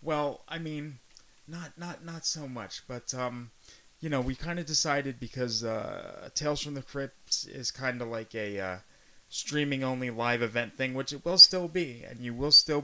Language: English